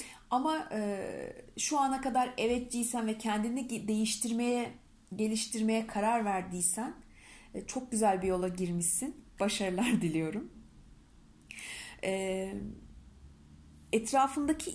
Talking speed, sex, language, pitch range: 75 wpm, female, Turkish, 185-235 Hz